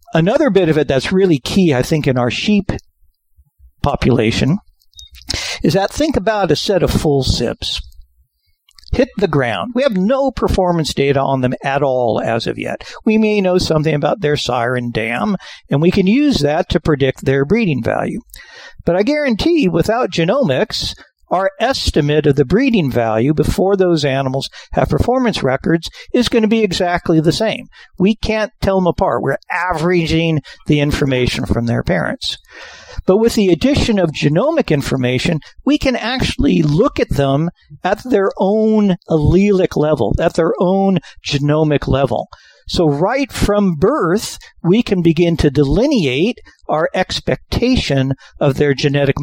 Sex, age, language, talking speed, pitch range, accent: male, 60-79, English, 155 wpm, 135-200 Hz, American